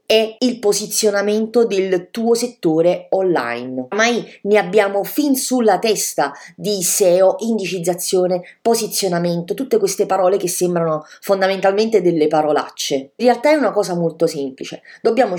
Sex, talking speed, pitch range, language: female, 130 wpm, 165-225 Hz, English